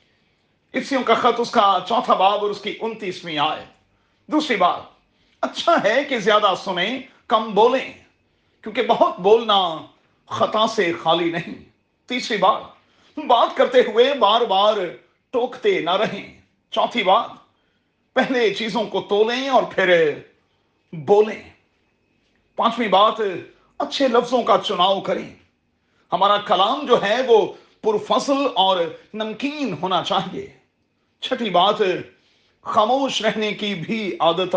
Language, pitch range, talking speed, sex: Urdu, 190-255 Hz, 125 wpm, male